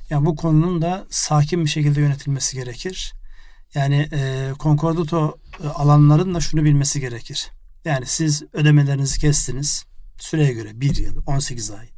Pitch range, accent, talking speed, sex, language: 135-160 Hz, native, 135 wpm, male, Turkish